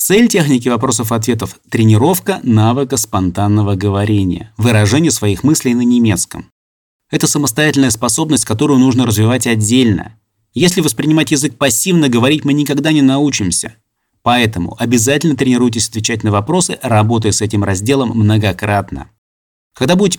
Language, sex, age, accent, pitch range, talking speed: Russian, male, 30-49, native, 110-145 Hz, 120 wpm